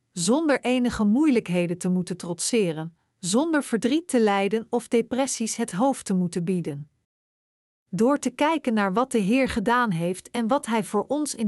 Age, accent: 50-69, Dutch